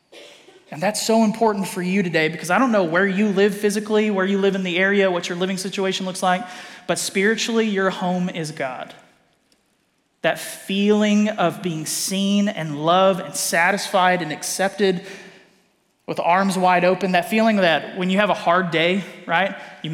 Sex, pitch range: male, 155-190 Hz